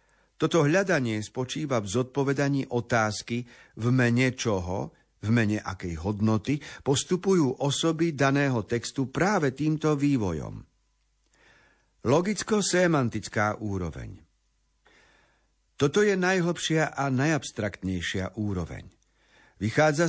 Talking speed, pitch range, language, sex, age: 90 wpm, 110-140 Hz, Slovak, male, 50-69